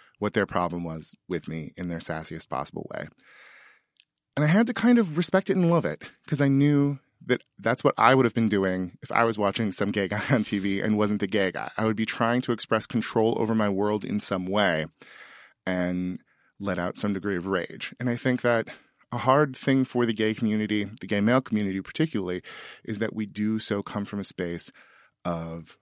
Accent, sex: American, male